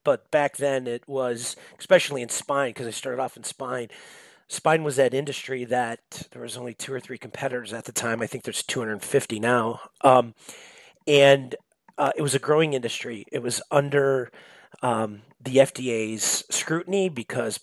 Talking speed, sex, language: 170 wpm, male, English